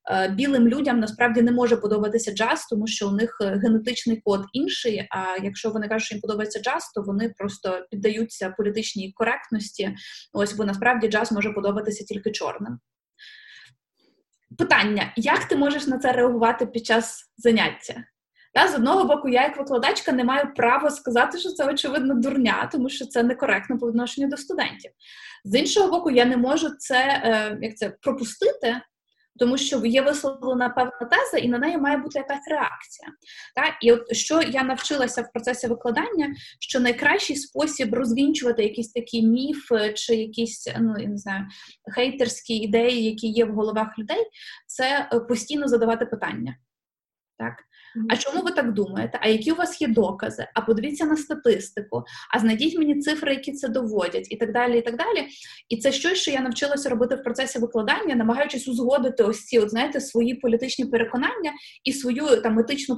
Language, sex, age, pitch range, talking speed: Ukrainian, female, 20-39, 225-280 Hz, 170 wpm